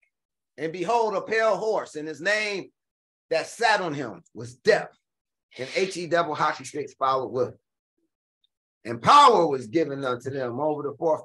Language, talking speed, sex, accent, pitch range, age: English, 165 wpm, male, American, 120-180 Hz, 30-49